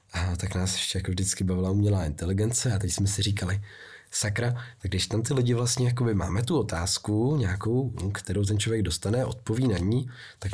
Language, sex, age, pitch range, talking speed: Czech, male, 20-39, 95-110 Hz, 190 wpm